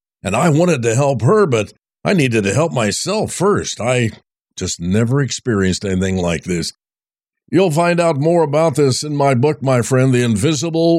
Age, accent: 50-69, American